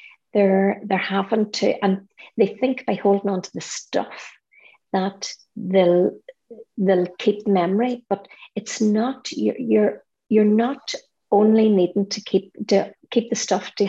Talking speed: 145 wpm